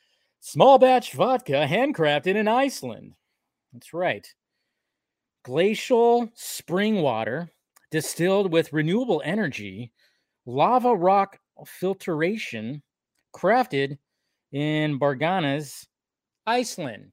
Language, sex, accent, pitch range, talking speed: English, male, American, 135-190 Hz, 75 wpm